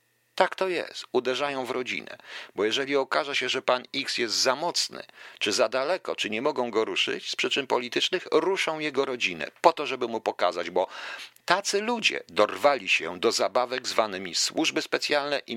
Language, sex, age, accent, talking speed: Polish, male, 50-69, native, 175 wpm